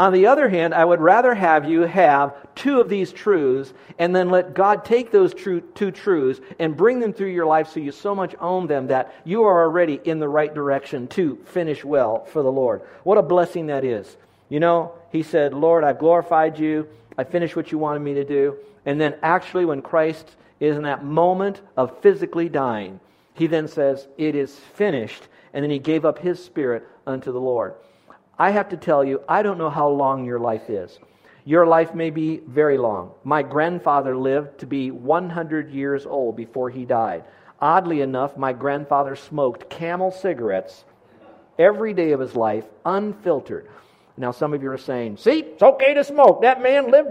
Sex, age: male, 50-69